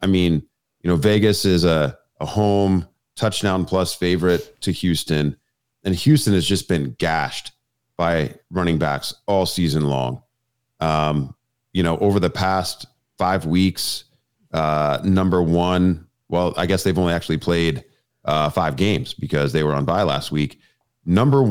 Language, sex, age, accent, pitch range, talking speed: English, male, 30-49, American, 80-100 Hz, 155 wpm